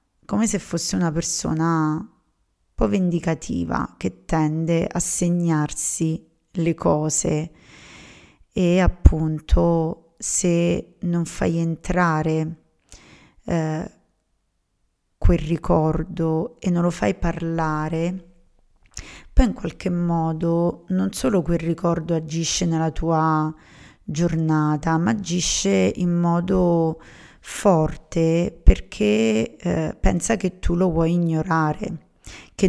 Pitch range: 160-175 Hz